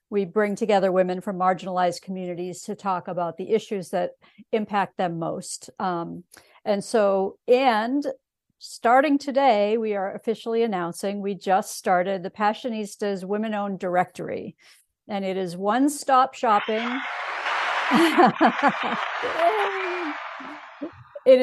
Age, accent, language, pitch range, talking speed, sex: 50-69, American, English, 185-235 Hz, 110 wpm, female